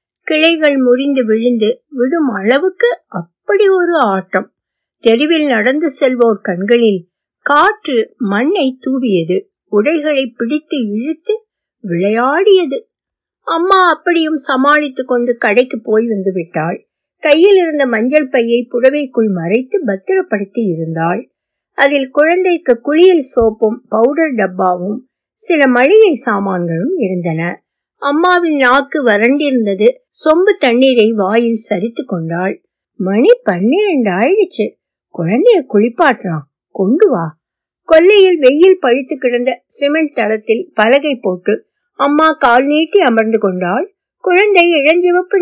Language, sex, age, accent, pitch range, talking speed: Tamil, female, 60-79, native, 215-325 Hz, 80 wpm